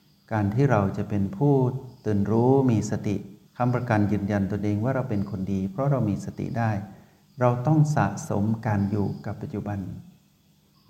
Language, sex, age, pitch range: Thai, male, 60-79, 100-135 Hz